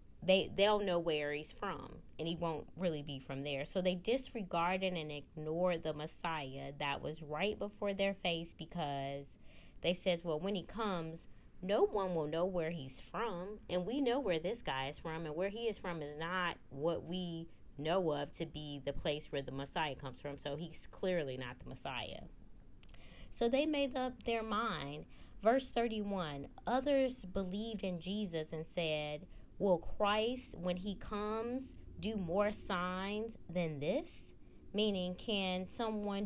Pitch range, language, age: 155-205 Hz, English, 20-39